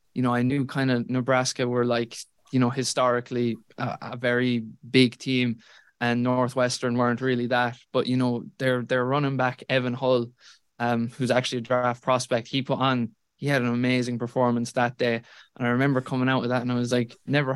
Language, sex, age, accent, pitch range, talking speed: English, male, 20-39, Irish, 120-130 Hz, 200 wpm